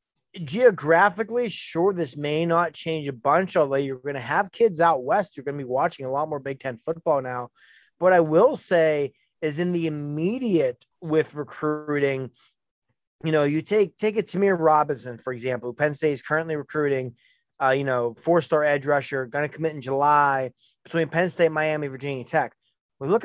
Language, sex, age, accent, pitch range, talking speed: English, male, 30-49, American, 140-175 Hz, 190 wpm